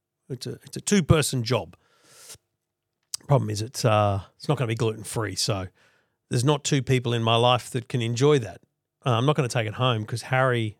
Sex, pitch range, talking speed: male, 125-170 Hz, 210 wpm